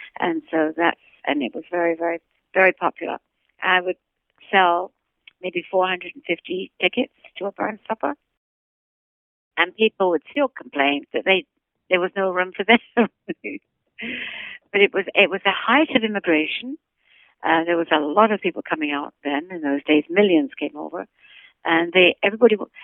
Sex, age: female, 60-79